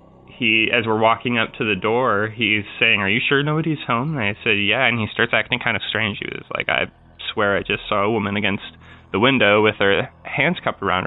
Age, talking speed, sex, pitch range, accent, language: 20-39, 240 wpm, male, 100-130 Hz, American, English